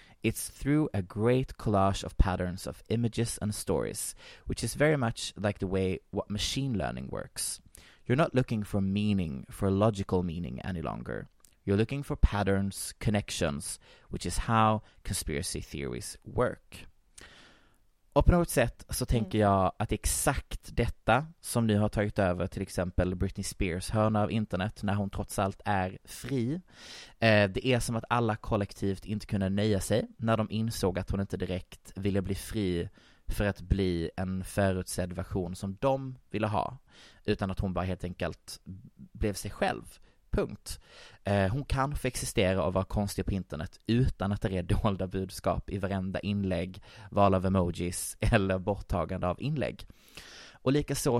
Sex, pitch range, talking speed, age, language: male, 95-110 Hz, 160 wpm, 20-39, Swedish